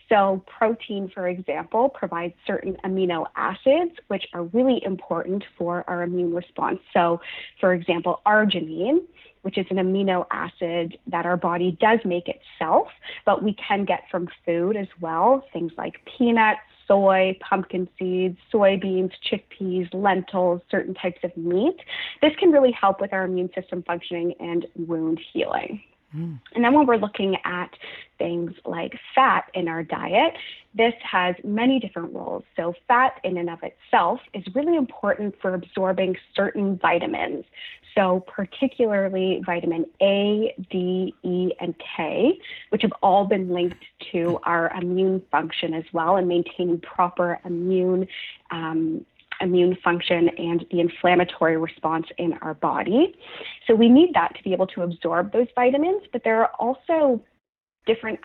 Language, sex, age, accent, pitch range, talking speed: English, female, 30-49, American, 175-215 Hz, 145 wpm